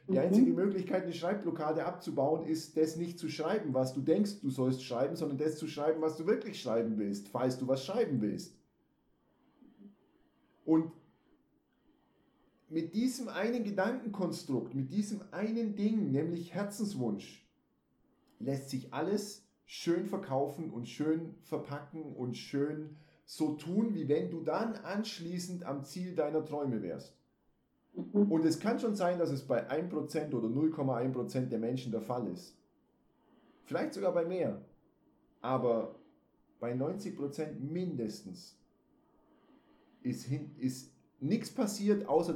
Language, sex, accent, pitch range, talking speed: German, male, German, 135-195 Hz, 130 wpm